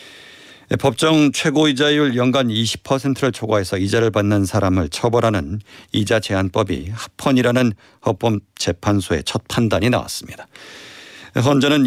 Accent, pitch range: native, 100-130 Hz